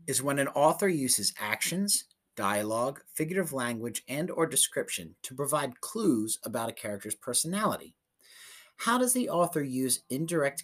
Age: 30-49